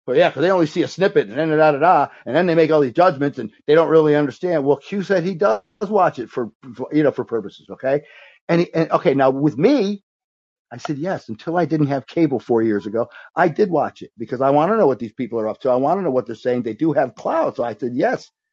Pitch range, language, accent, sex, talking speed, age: 140-190 Hz, English, American, male, 260 wpm, 50-69